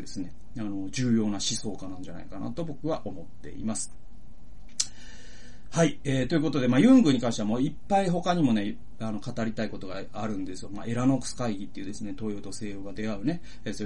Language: Japanese